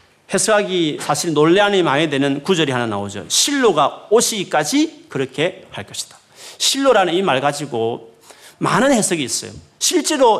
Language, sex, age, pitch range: Korean, male, 40-59, 140-230 Hz